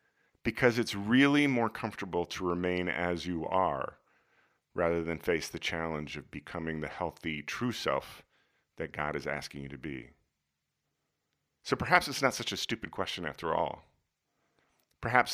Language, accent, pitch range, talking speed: English, American, 80-110 Hz, 155 wpm